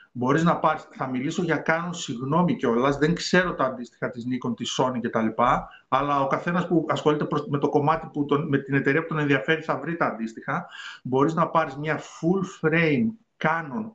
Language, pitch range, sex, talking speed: Greek, 135-170 Hz, male, 200 wpm